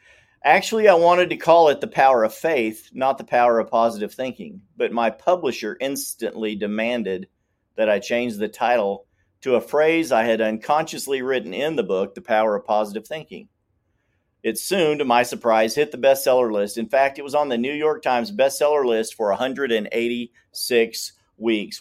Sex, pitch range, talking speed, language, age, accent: male, 110-145 Hz, 175 wpm, English, 50-69, American